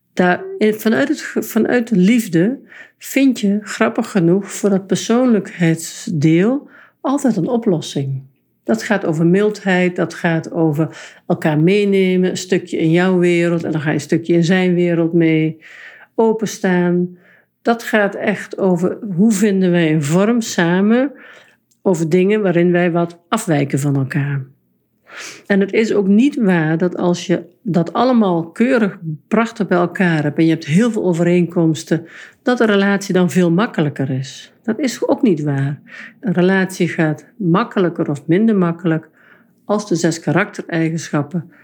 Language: Dutch